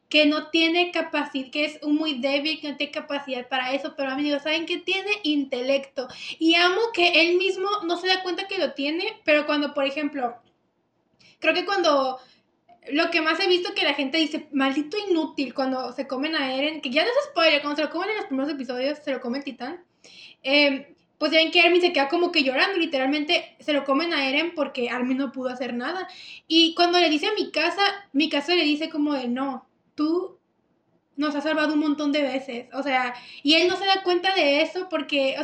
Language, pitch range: Spanish, 280-345 Hz